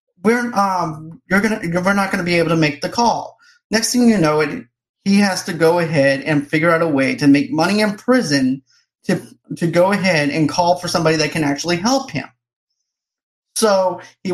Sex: male